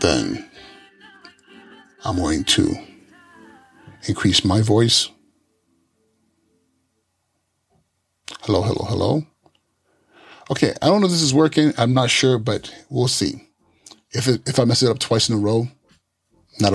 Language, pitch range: English, 100-125 Hz